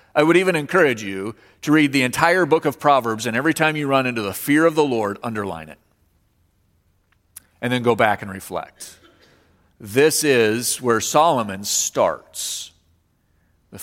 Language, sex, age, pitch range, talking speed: English, male, 40-59, 110-165 Hz, 160 wpm